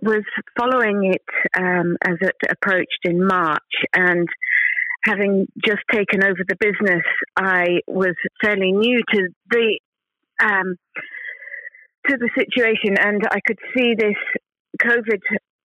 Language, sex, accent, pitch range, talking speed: English, female, British, 185-240 Hz, 125 wpm